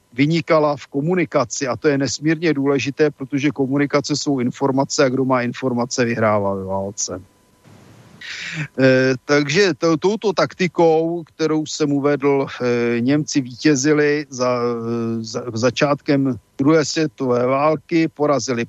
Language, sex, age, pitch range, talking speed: Slovak, male, 50-69, 125-150 Hz, 120 wpm